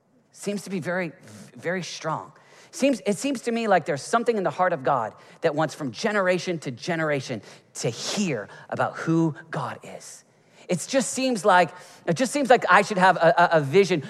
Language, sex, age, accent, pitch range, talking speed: English, male, 40-59, American, 140-175 Hz, 190 wpm